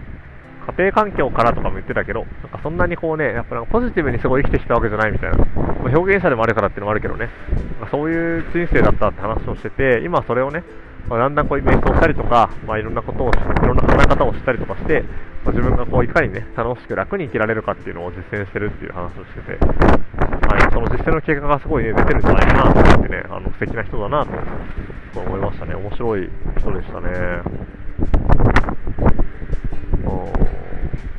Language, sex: Japanese, male